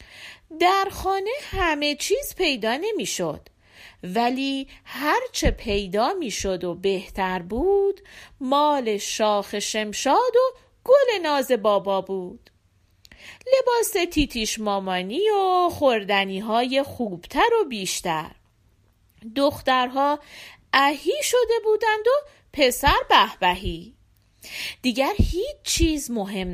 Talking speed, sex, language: 95 wpm, female, Persian